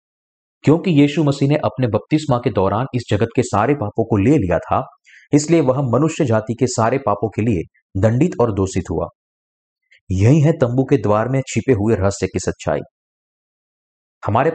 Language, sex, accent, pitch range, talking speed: Hindi, male, native, 100-135 Hz, 175 wpm